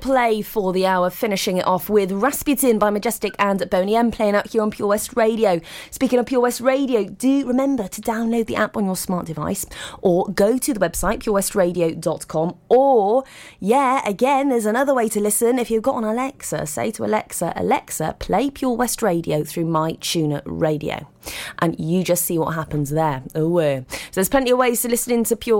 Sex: female